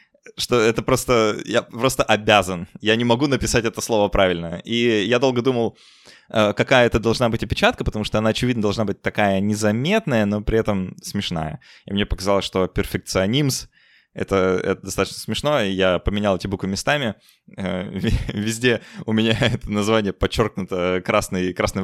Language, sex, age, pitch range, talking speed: Russian, male, 20-39, 95-120 Hz, 155 wpm